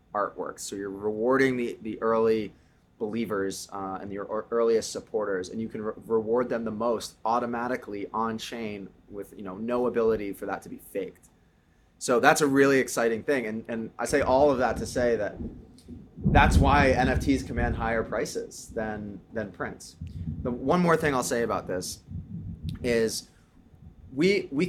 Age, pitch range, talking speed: 20-39, 100-130 Hz, 170 wpm